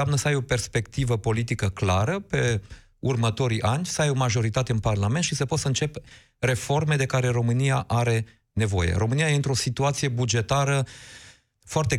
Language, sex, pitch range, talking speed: Romanian, male, 110-135 Hz, 165 wpm